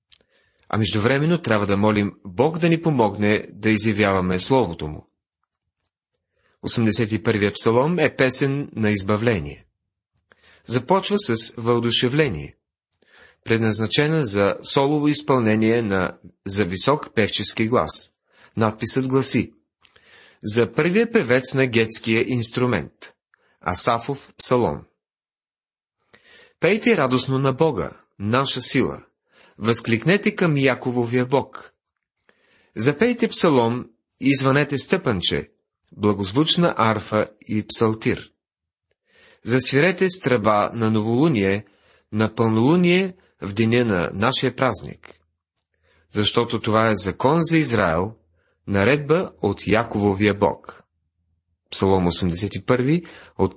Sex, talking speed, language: male, 95 wpm, Bulgarian